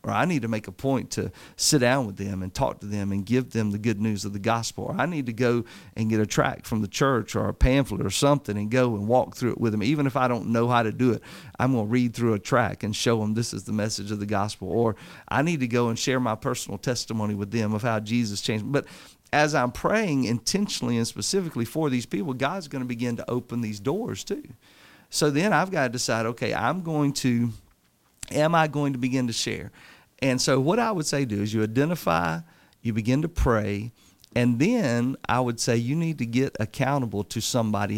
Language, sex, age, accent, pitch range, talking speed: English, male, 40-59, American, 110-135 Hz, 240 wpm